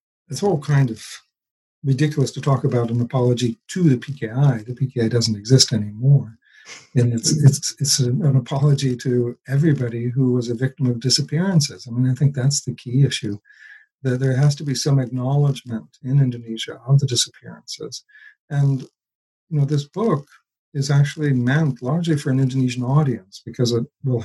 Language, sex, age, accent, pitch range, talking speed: English, male, 50-69, American, 120-145 Hz, 170 wpm